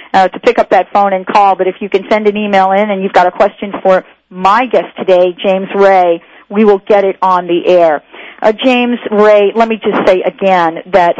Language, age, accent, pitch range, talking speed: English, 50-69, American, 190-230 Hz, 230 wpm